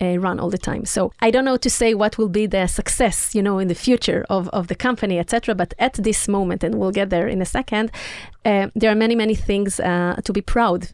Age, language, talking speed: 30-49, Hebrew, 260 wpm